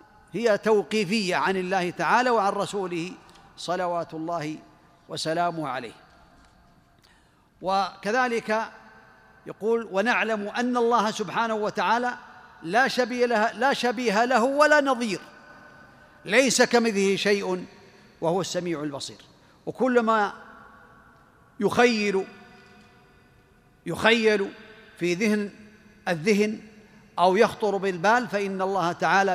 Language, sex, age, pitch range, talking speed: Arabic, male, 50-69, 180-220 Hz, 90 wpm